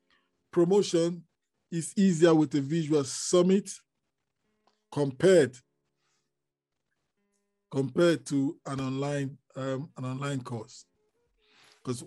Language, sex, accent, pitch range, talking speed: English, male, Nigerian, 135-180 Hz, 85 wpm